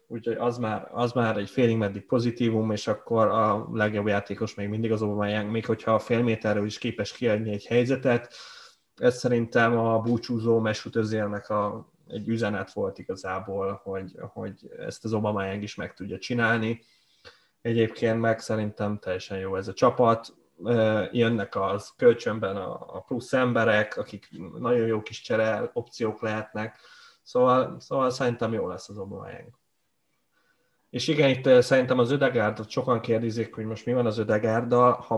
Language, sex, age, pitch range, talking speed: Hungarian, male, 20-39, 105-115 Hz, 155 wpm